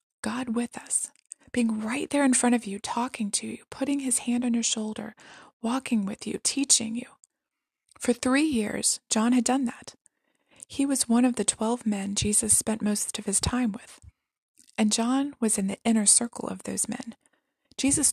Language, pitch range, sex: English, 215-260 Hz, female